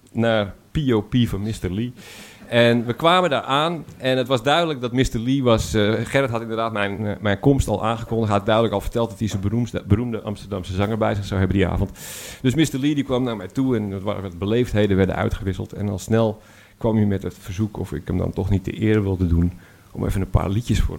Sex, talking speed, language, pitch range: male, 240 wpm, Dutch, 100-125 Hz